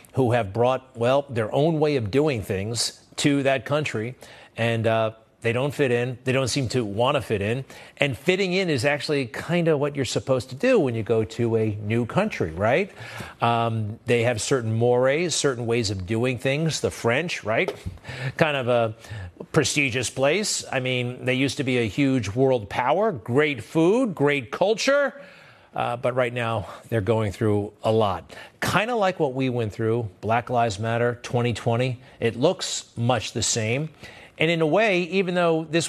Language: English